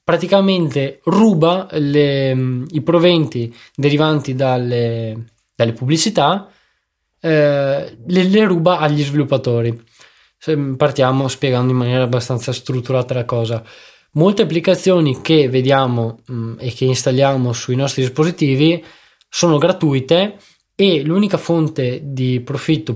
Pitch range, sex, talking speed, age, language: 130-160 Hz, male, 100 wpm, 20-39, Italian